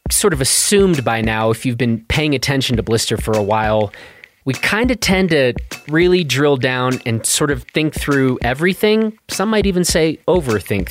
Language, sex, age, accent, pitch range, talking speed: English, male, 30-49, American, 120-180 Hz, 185 wpm